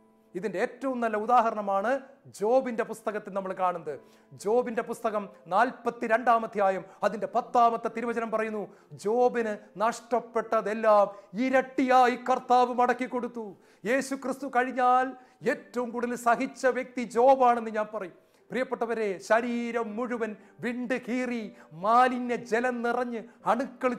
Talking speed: 95 wpm